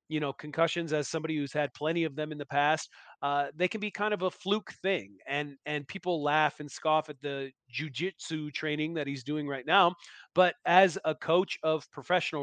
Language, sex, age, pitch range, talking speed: English, male, 30-49, 140-175 Hz, 210 wpm